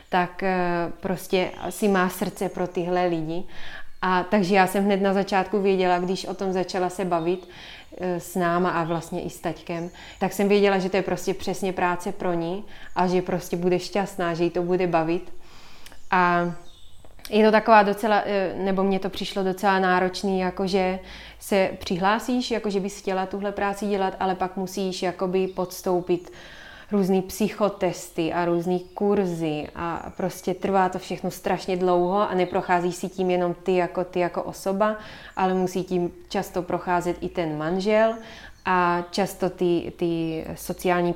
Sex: female